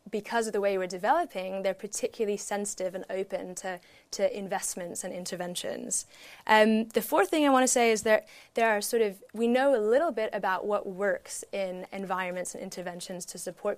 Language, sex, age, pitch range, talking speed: English, female, 10-29, 185-220 Hz, 190 wpm